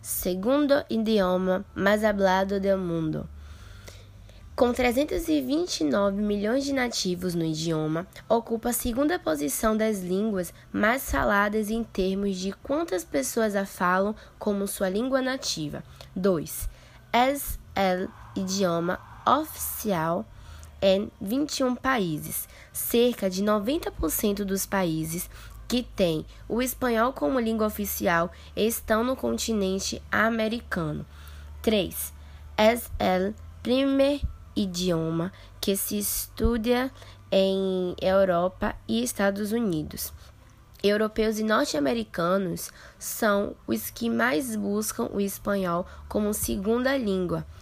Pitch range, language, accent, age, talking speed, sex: 170-230 Hz, Portuguese, Brazilian, 10-29, 105 wpm, female